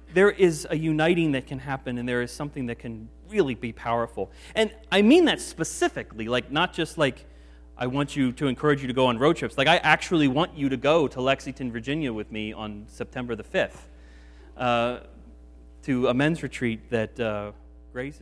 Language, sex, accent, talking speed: English, male, American, 200 wpm